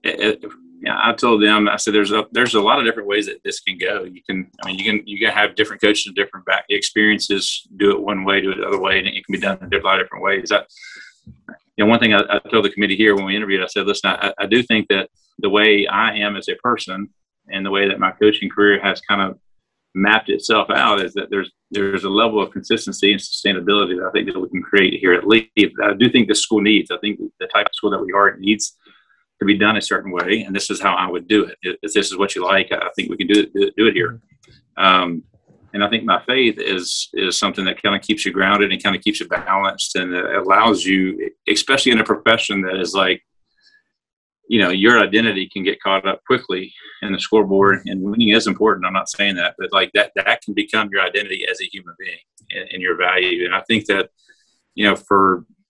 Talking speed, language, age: 255 wpm, English, 40-59